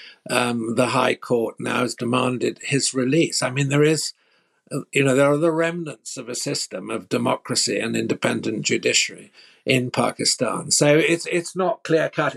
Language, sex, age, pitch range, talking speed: English, male, 60-79, 125-145 Hz, 165 wpm